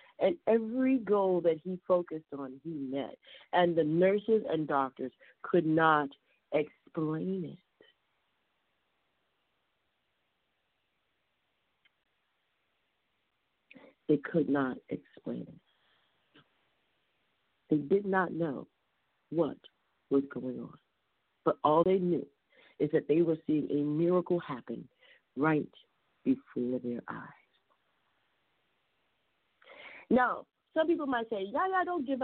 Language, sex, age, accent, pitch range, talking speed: English, female, 50-69, American, 165-265 Hz, 105 wpm